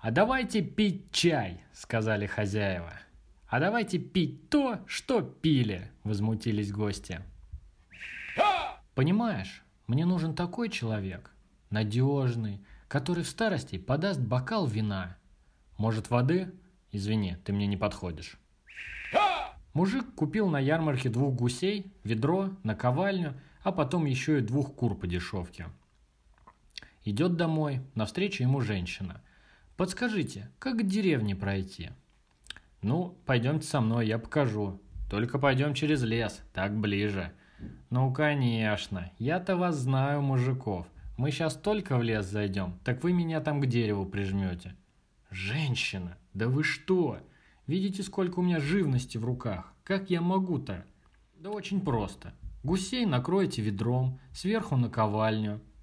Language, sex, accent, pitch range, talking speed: Russian, male, native, 105-170 Hz, 120 wpm